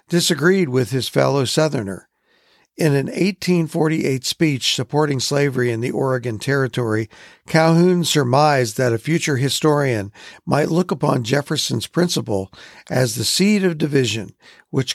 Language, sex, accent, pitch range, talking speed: English, male, American, 125-165 Hz, 130 wpm